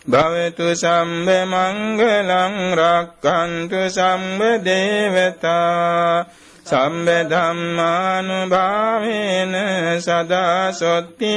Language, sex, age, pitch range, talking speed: Vietnamese, male, 60-79, 170-185 Hz, 60 wpm